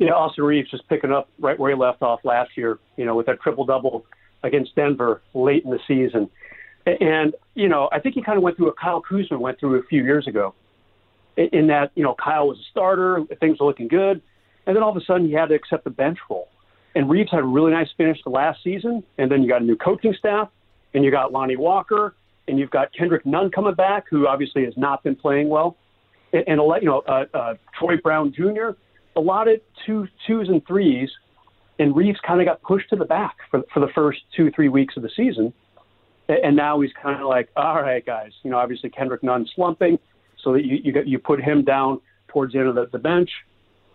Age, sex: 40-59, male